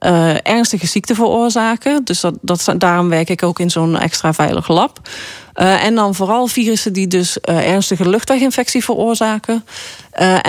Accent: Dutch